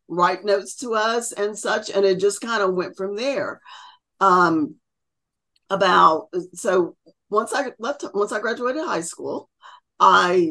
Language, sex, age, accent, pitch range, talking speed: English, female, 40-59, American, 175-230 Hz, 150 wpm